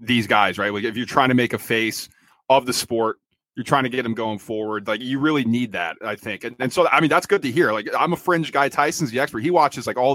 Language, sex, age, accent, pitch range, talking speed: English, male, 30-49, American, 120-150 Hz, 290 wpm